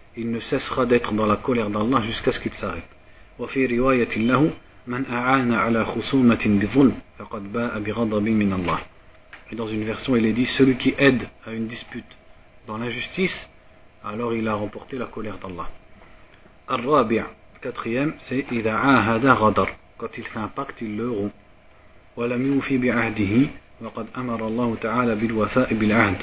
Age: 40-59